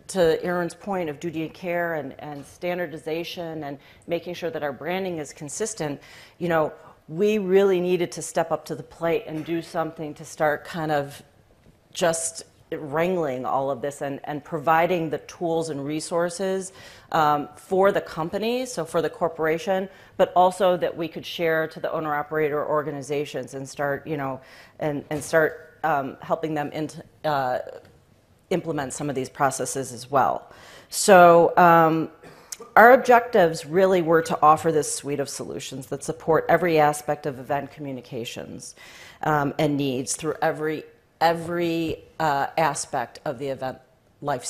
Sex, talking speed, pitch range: female, 155 wpm, 145-170 Hz